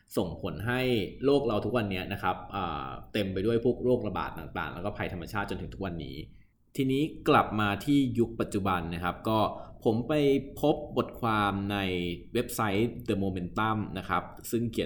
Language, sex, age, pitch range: Thai, male, 20-39, 95-120 Hz